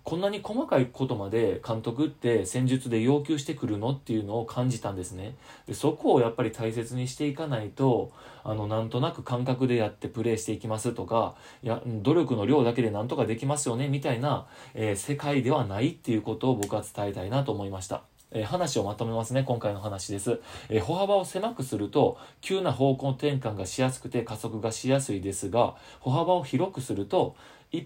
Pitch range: 110-140 Hz